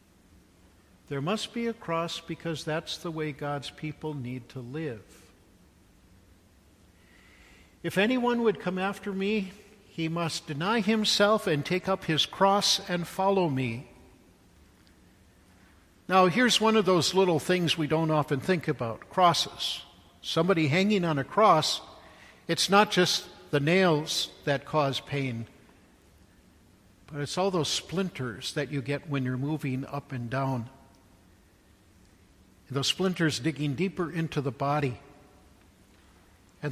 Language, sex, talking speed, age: English, male, 130 wpm, 60-79